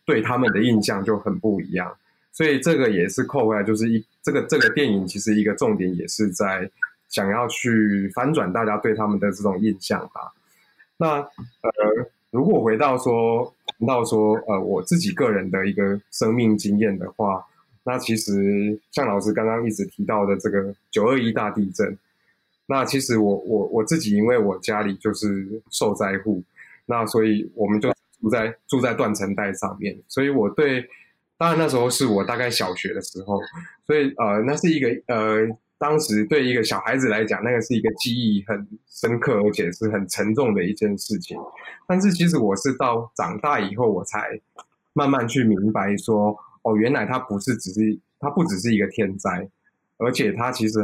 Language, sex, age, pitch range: Chinese, male, 20-39, 105-125 Hz